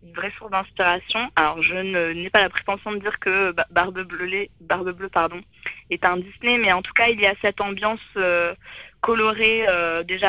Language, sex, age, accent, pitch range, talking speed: French, female, 20-39, French, 180-210 Hz, 210 wpm